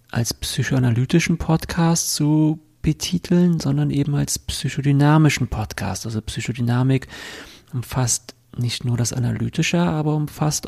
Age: 40-59